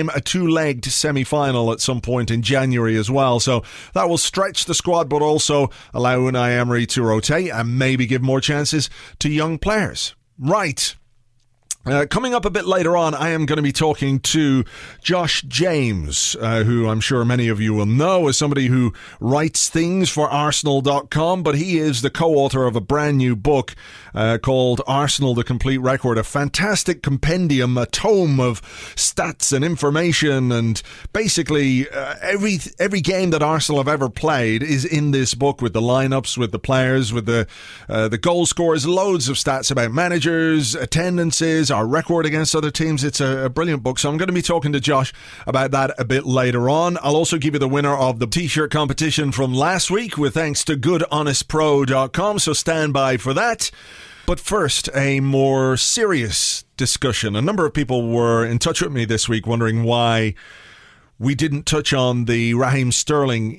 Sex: male